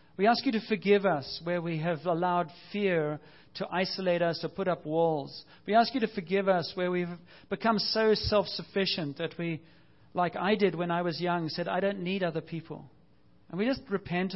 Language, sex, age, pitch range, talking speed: English, male, 40-59, 155-185 Hz, 200 wpm